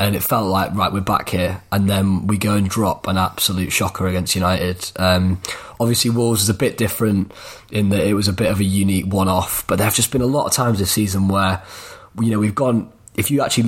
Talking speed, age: 240 wpm, 20-39